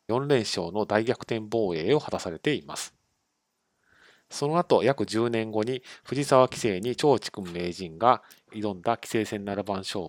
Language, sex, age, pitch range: Japanese, male, 40-59, 100-130 Hz